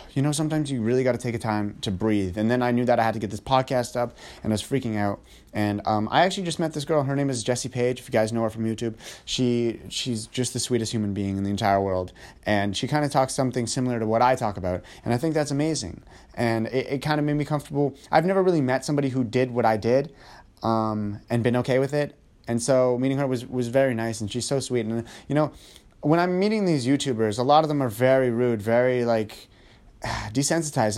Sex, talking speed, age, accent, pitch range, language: male, 255 wpm, 30-49, American, 115-135 Hz, English